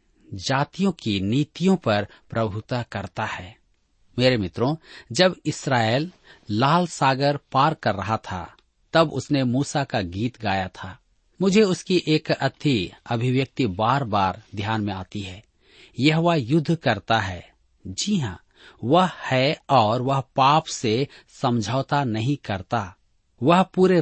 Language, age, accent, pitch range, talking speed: Hindi, 40-59, native, 110-155 Hz, 130 wpm